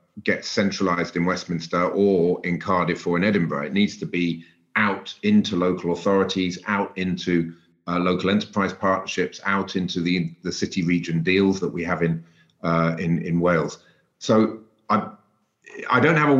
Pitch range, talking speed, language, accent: 85-100 Hz, 165 wpm, English, British